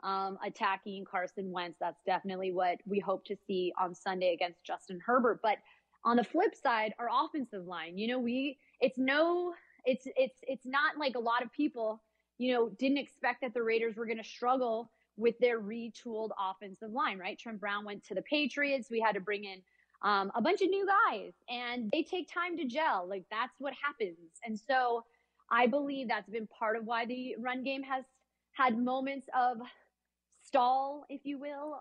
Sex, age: female, 20-39